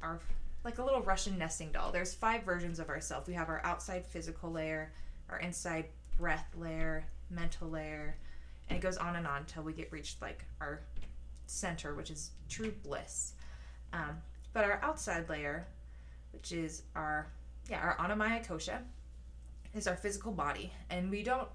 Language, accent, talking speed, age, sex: English, American, 165 wpm, 20-39, female